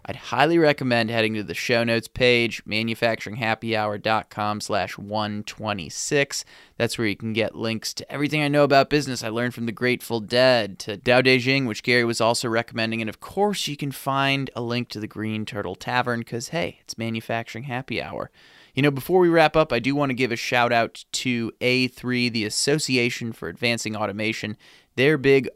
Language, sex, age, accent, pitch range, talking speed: English, male, 20-39, American, 110-130 Hz, 190 wpm